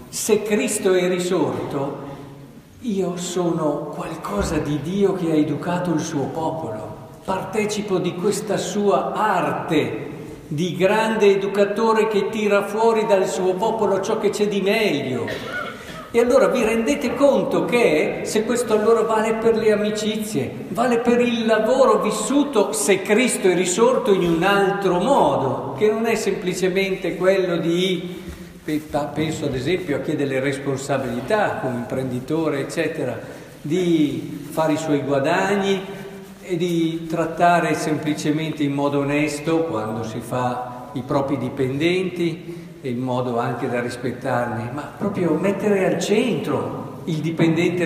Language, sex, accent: Italian, male, native